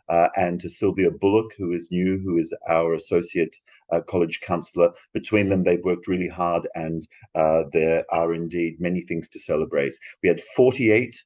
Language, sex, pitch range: French, male, 90-105 Hz